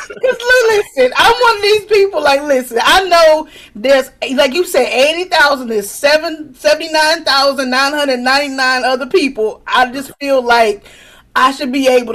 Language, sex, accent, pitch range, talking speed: English, female, American, 245-310 Hz, 135 wpm